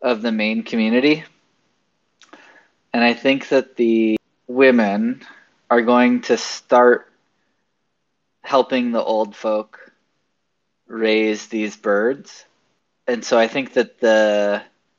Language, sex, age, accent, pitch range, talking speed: English, male, 20-39, American, 110-125 Hz, 110 wpm